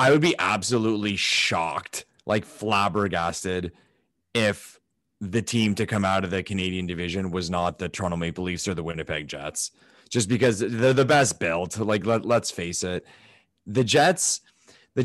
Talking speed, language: 160 wpm, English